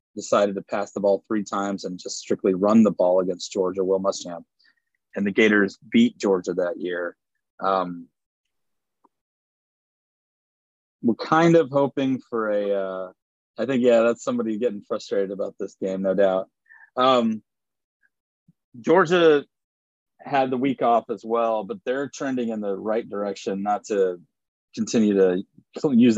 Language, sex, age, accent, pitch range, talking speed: English, male, 30-49, American, 100-140 Hz, 145 wpm